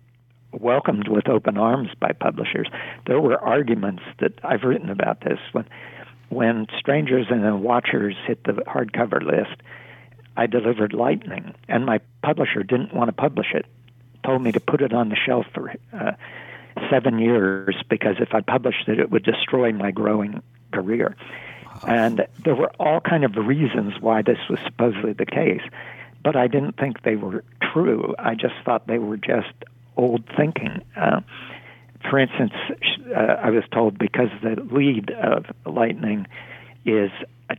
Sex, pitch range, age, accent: male, 110-125 Hz, 60-79, American